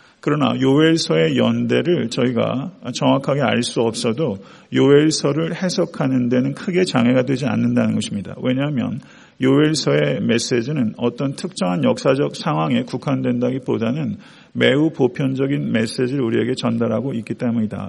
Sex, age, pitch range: male, 40-59, 120-140 Hz